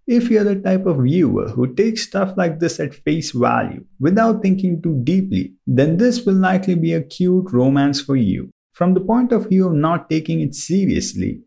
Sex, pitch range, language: male, 150-205 Hz, English